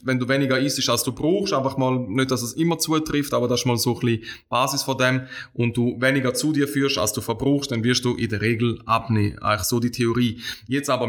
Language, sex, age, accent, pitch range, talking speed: German, male, 20-39, Austrian, 120-135 Hz, 250 wpm